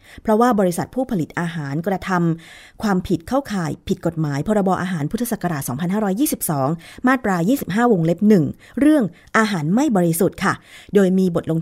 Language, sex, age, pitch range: Thai, female, 30-49, 165-220 Hz